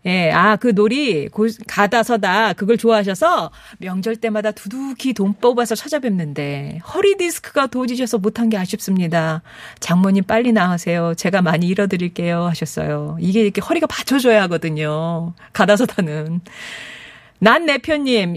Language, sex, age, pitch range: Korean, female, 40-59, 180-245 Hz